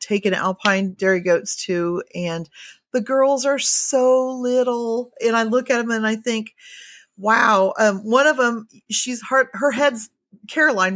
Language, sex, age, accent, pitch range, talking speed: English, female, 40-59, American, 185-235 Hz, 160 wpm